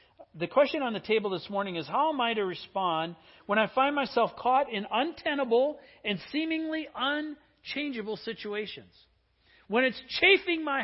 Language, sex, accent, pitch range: English, male, American, 185-260 Hz